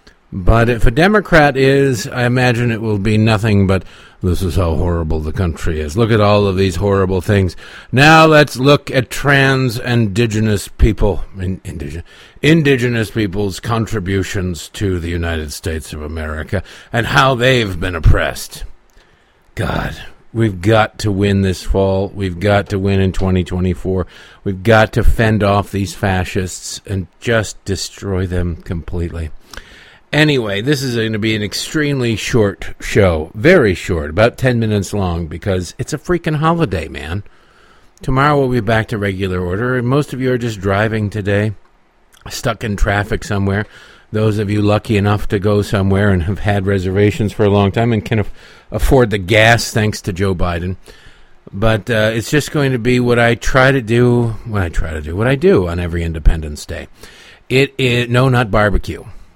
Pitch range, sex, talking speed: 95-120 Hz, male, 165 wpm